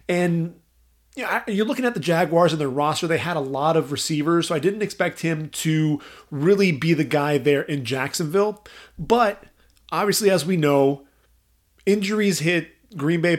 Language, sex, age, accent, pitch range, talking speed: English, male, 30-49, American, 145-185 Hz, 175 wpm